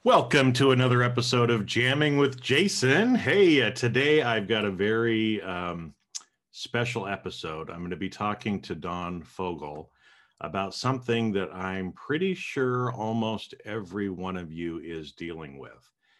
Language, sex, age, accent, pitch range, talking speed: English, male, 50-69, American, 85-115 Hz, 145 wpm